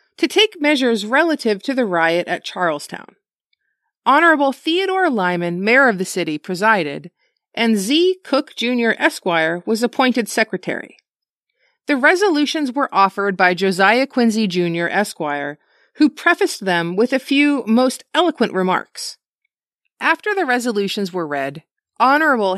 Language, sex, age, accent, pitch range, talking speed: English, female, 40-59, American, 195-295 Hz, 130 wpm